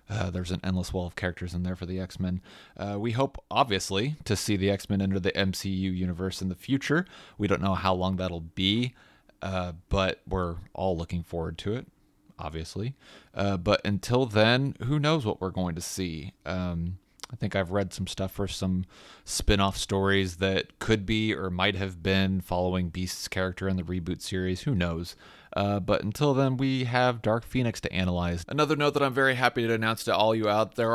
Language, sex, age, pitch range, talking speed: English, male, 30-49, 95-110 Hz, 200 wpm